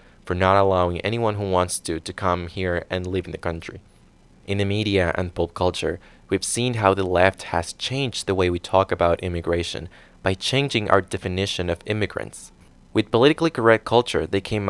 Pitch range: 90-105 Hz